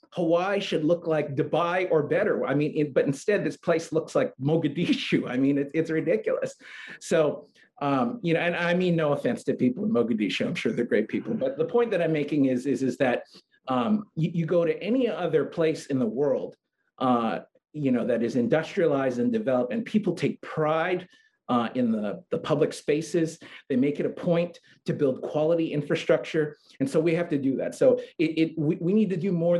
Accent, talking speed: American, 205 wpm